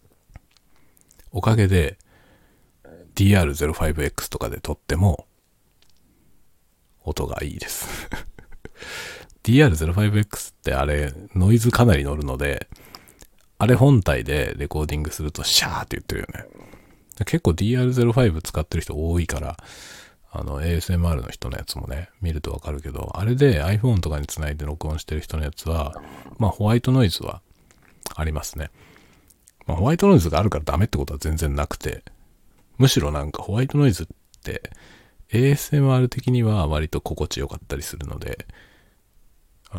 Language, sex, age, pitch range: Japanese, male, 40-59, 75-105 Hz